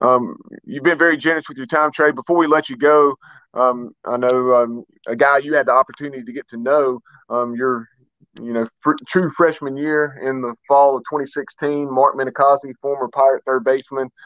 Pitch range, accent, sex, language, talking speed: 125-140 Hz, American, male, English, 200 wpm